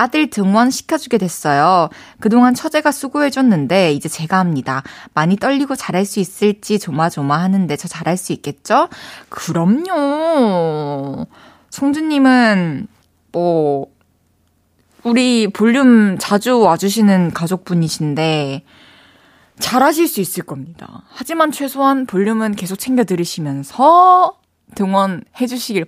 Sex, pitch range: female, 170-250 Hz